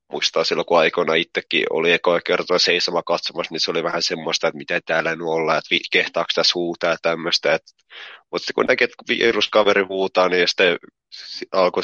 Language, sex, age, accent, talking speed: Finnish, male, 20-39, native, 190 wpm